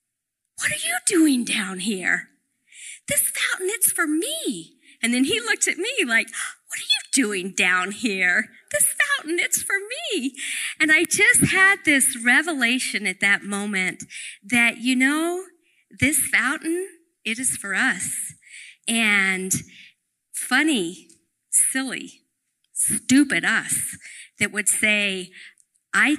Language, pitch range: English, 200-290 Hz